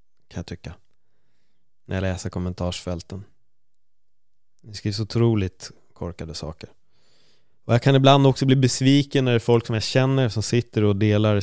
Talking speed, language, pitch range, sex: 160 wpm, Swedish, 95-125 Hz, male